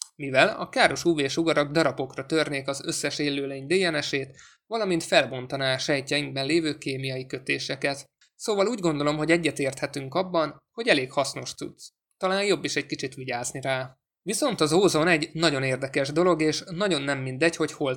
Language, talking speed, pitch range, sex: Hungarian, 165 wpm, 135-165 Hz, male